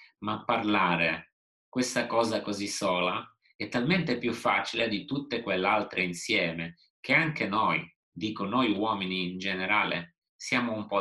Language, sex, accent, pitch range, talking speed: Italian, male, native, 85-100 Hz, 135 wpm